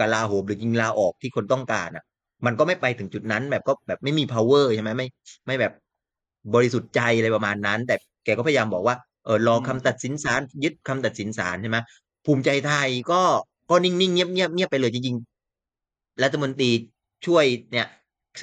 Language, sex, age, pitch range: Thai, male, 30-49, 110-140 Hz